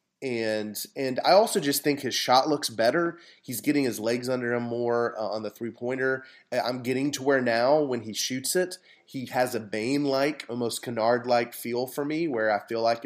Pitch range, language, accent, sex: 110-140 Hz, English, American, male